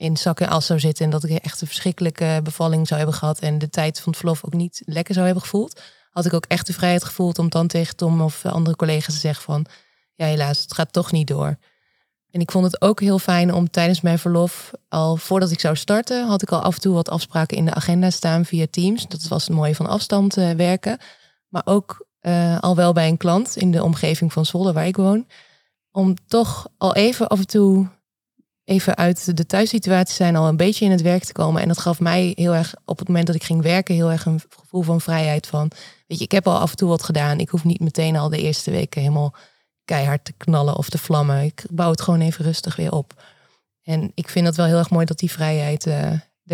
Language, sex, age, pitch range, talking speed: Dutch, female, 20-39, 160-180 Hz, 245 wpm